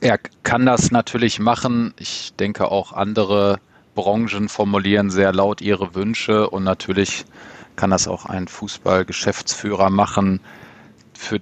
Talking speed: 125 wpm